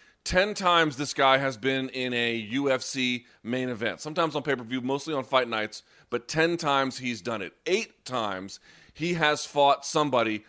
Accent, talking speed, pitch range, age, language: American, 170 wpm, 120-150 Hz, 30-49, English